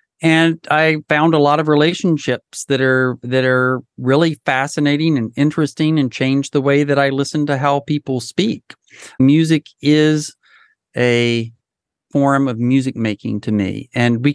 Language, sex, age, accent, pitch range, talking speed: English, male, 40-59, American, 125-150 Hz, 155 wpm